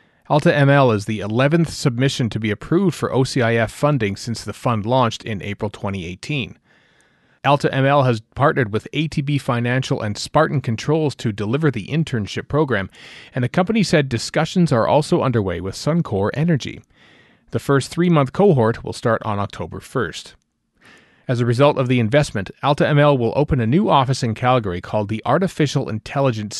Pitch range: 110-150 Hz